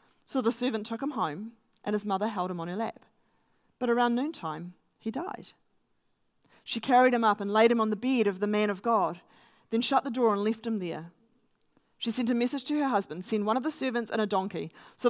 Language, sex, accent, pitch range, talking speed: English, female, Australian, 210-280 Hz, 230 wpm